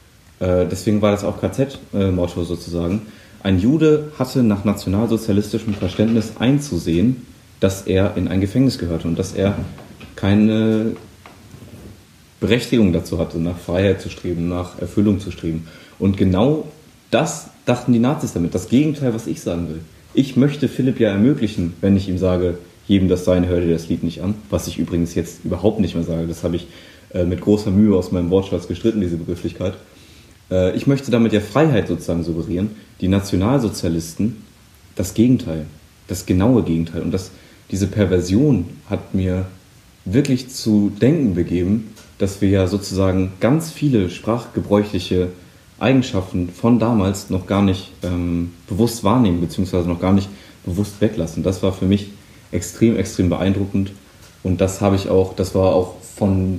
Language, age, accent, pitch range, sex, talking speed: German, 30-49, German, 90-110 Hz, male, 155 wpm